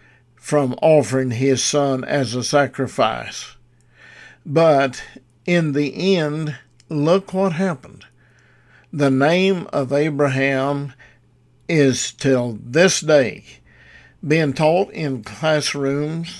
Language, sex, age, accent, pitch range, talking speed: English, male, 50-69, American, 130-155 Hz, 95 wpm